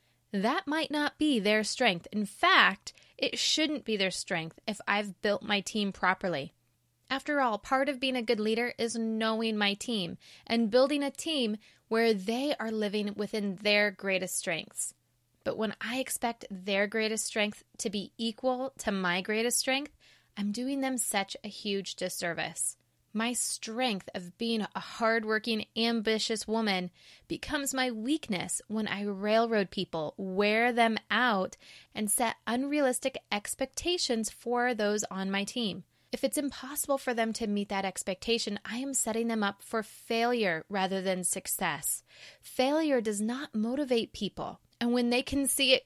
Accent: American